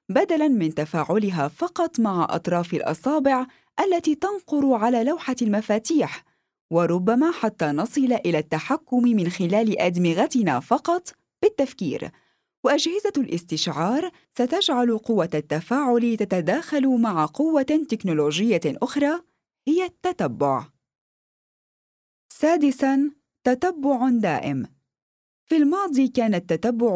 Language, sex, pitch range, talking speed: Arabic, female, 210-300 Hz, 90 wpm